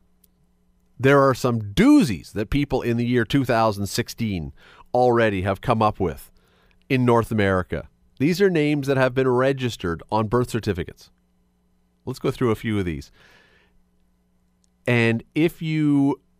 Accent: American